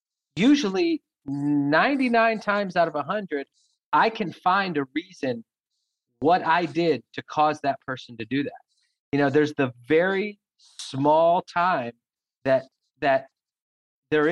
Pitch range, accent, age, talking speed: 140-185 Hz, American, 40-59, 130 wpm